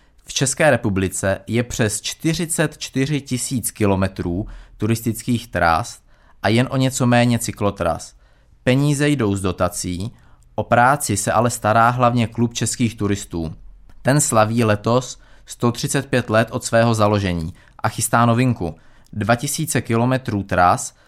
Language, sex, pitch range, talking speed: Czech, male, 100-125 Hz, 120 wpm